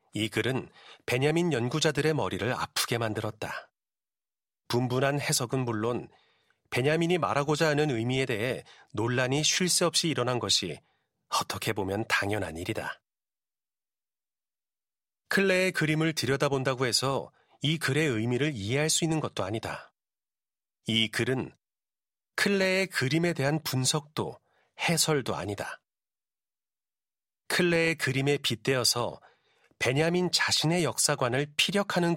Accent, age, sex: native, 40-59, male